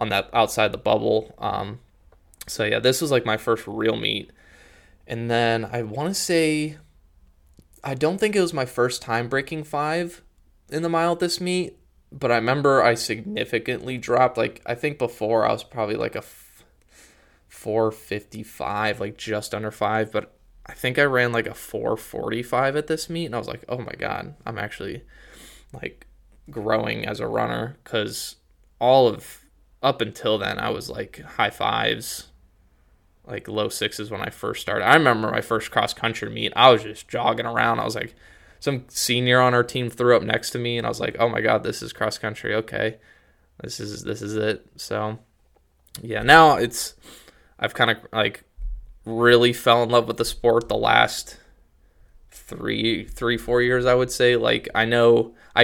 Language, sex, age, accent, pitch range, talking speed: English, male, 20-39, American, 110-130 Hz, 180 wpm